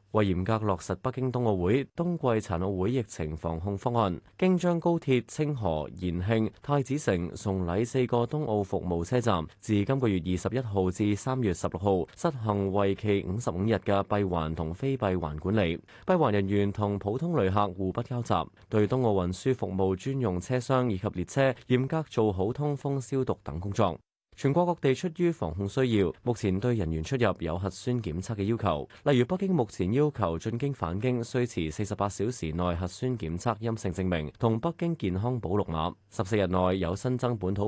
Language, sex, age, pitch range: Chinese, male, 20-39, 95-125 Hz